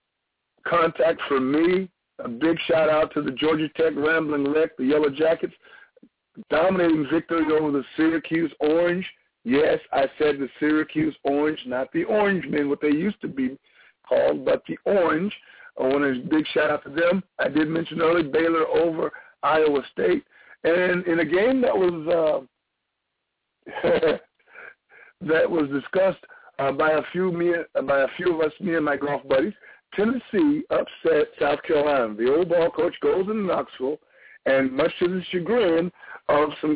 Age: 60-79